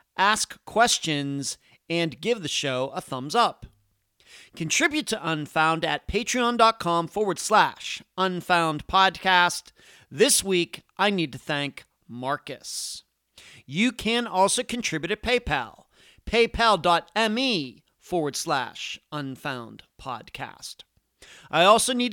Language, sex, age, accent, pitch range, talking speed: English, male, 40-59, American, 145-210 Hz, 100 wpm